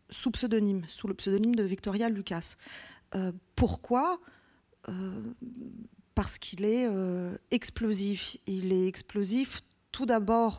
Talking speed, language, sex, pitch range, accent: 120 wpm, French, female, 185-230 Hz, French